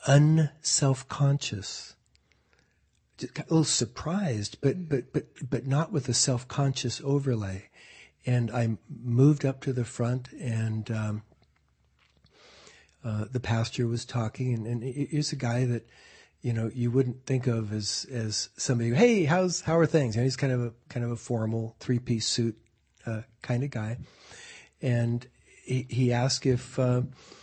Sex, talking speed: male, 155 wpm